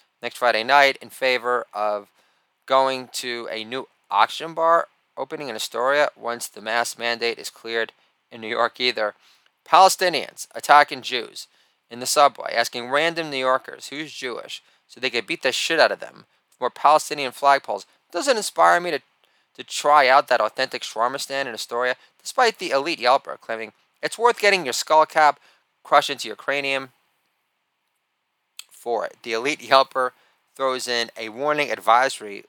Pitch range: 115-140 Hz